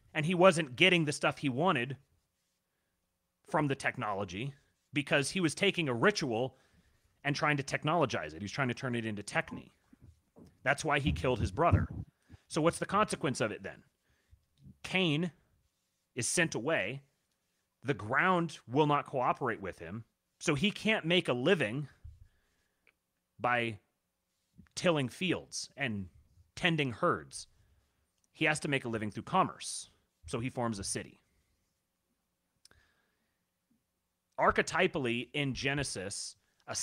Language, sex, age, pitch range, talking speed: English, male, 30-49, 110-155 Hz, 135 wpm